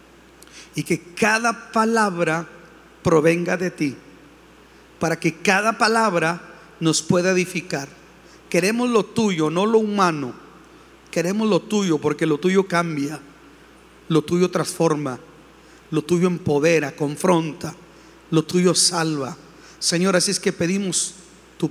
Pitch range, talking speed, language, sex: 160-200 Hz, 120 wpm, Spanish, male